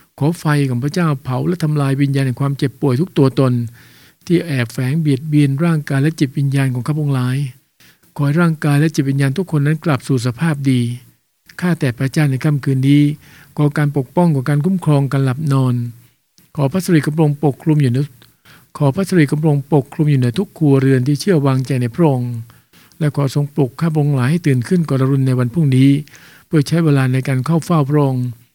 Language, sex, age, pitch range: English, male, 60-79, 130-155 Hz